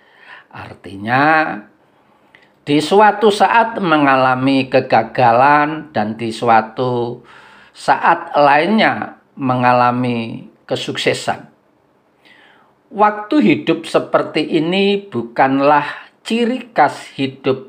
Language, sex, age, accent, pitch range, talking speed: Indonesian, male, 50-69, native, 125-155 Hz, 70 wpm